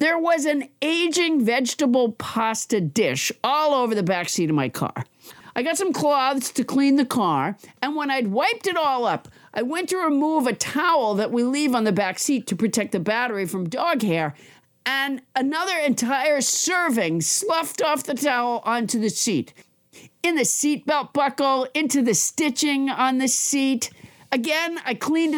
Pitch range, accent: 235-310 Hz, American